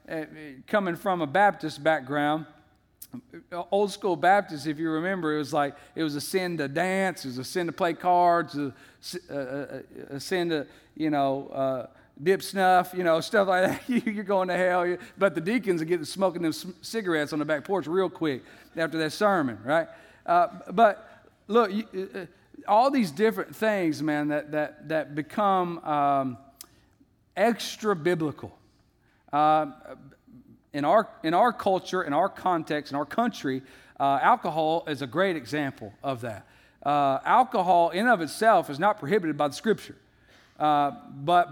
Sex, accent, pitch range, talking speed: male, American, 150-195 Hz, 165 wpm